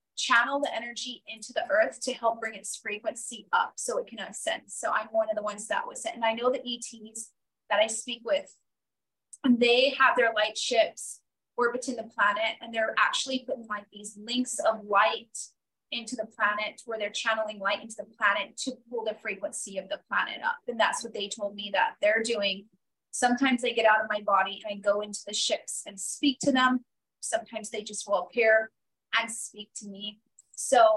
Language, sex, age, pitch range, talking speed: English, female, 20-39, 215-270 Hz, 205 wpm